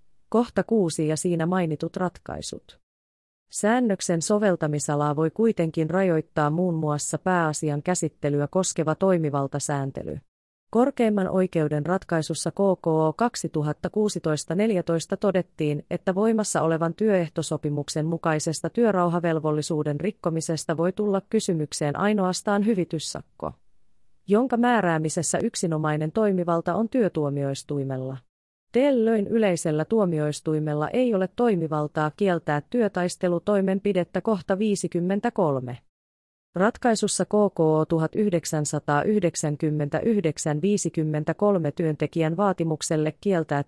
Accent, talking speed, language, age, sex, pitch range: native, 80 wpm, Finnish, 30-49, female, 150-200 Hz